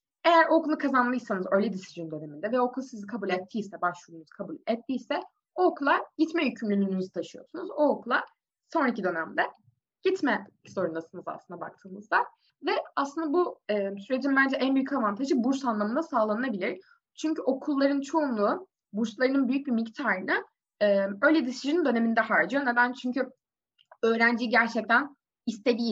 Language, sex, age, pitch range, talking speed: Turkish, female, 20-39, 205-285 Hz, 125 wpm